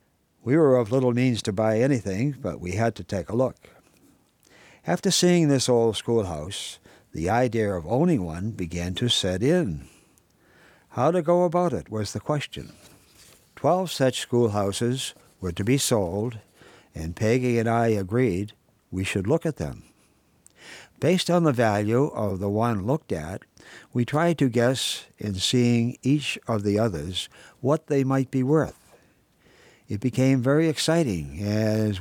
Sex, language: male, English